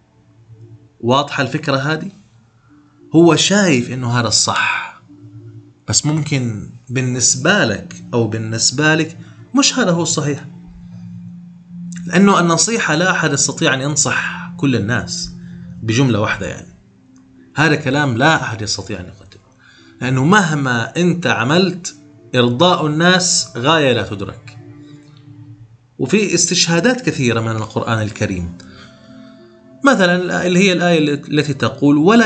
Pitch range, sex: 120-170 Hz, male